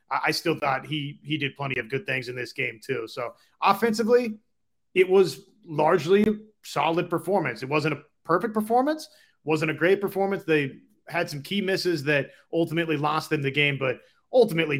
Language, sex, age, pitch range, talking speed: English, male, 30-49, 145-185 Hz, 175 wpm